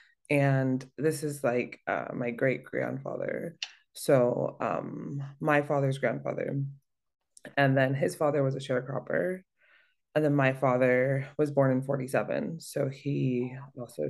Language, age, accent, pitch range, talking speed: English, 20-39, American, 130-145 Hz, 130 wpm